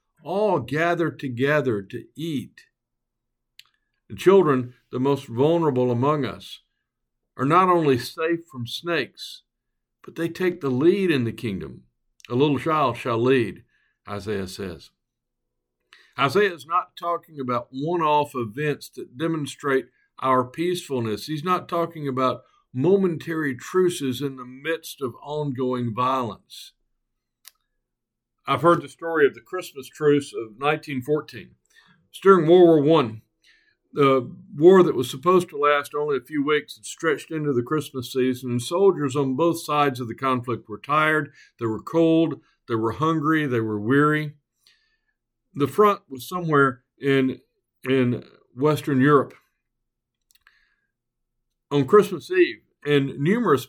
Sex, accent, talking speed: male, American, 130 wpm